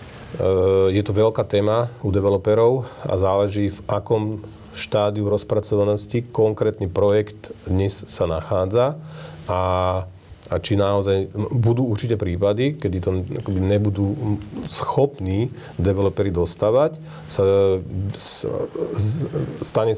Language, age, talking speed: Slovak, 40-59, 95 wpm